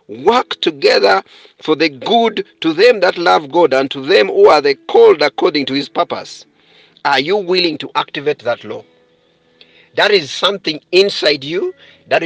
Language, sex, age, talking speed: English, male, 50-69, 165 wpm